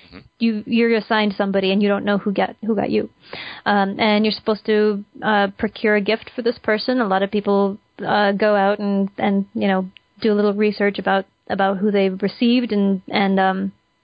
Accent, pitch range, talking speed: American, 205-230 Hz, 205 wpm